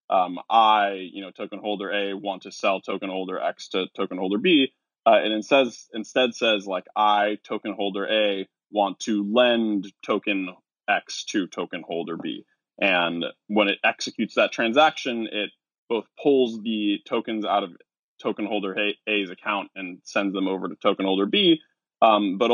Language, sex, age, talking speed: English, male, 20-39, 170 wpm